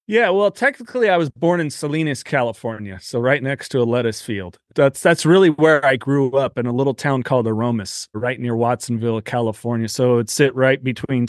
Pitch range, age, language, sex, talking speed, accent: 120-145 Hz, 30-49, English, male, 200 wpm, American